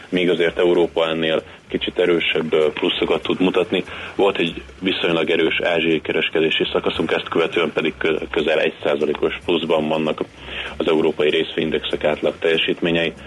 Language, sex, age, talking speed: Hungarian, male, 30-49, 125 wpm